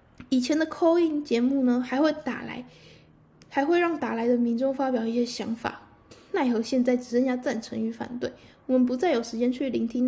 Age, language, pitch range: 10-29, Chinese, 235-295 Hz